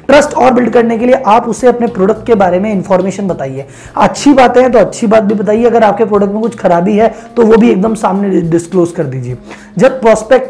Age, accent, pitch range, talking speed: 20-39, native, 190-235 Hz, 230 wpm